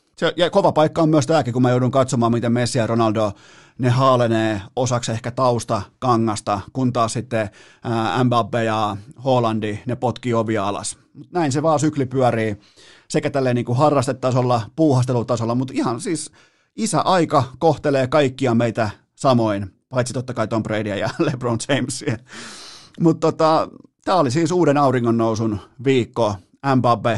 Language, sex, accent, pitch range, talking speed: Finnish, male, native, 115-145 Hz, 150 wpm